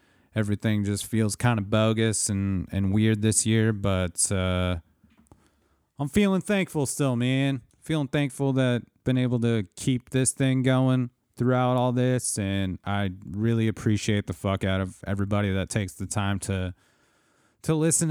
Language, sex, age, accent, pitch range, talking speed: English, male, 30-49, American, 100-130 Hz, 155 wpm